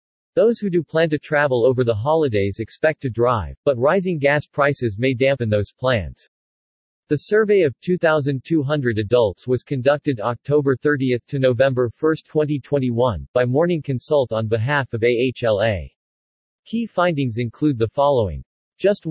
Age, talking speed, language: 40-59, 145 wpm, English